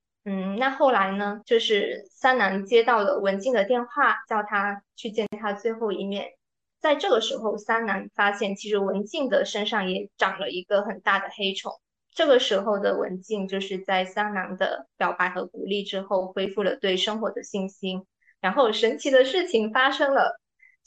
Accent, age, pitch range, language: native, 20-39, 200-275 Hz, Chinese